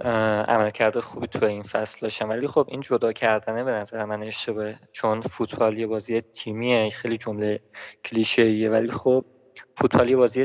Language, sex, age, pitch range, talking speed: Persian, male, 20-39, 110-125 Hz, 150 wpm